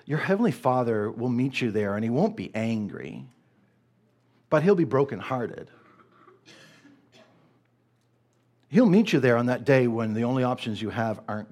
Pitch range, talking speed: 110-135 Hz, 155 wpm